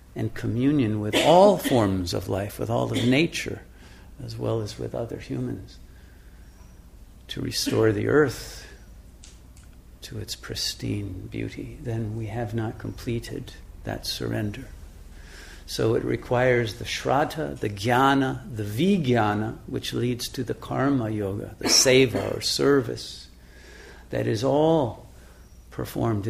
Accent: American